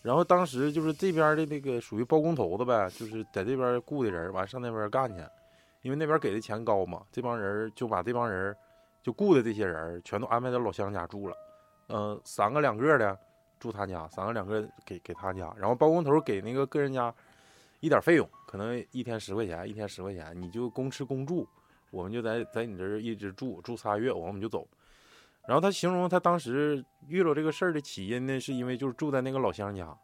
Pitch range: 105-155 Hz